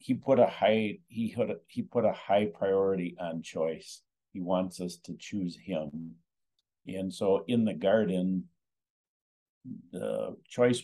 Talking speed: 135 wpm